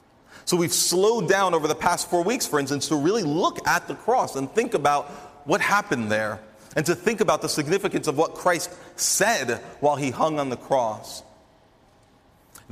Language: English